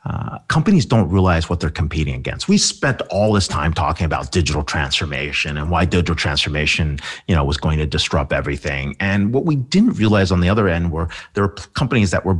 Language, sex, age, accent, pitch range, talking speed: English, male, 40-59, American, 80-120 Hz, 210 wpm